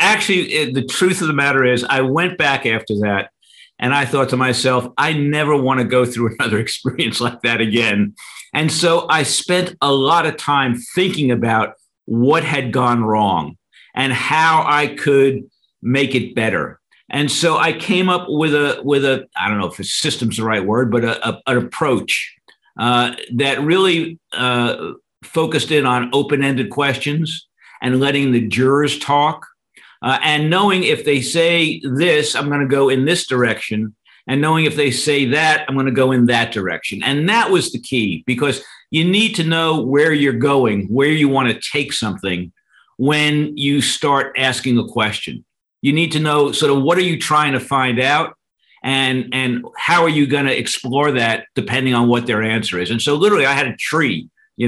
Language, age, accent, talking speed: English, 50-69, American, 190 wpm